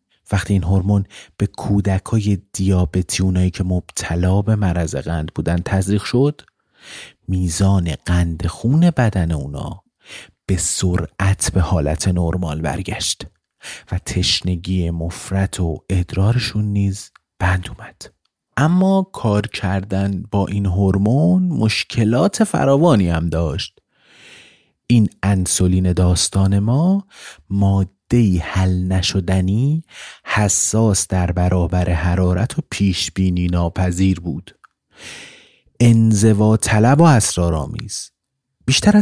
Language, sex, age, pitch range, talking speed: Persian, male, 30-49, 90-110 Hz, 100 wpm